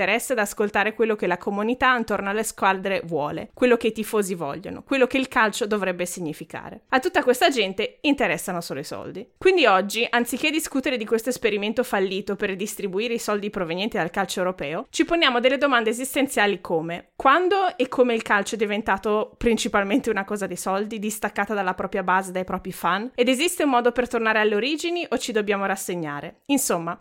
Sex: female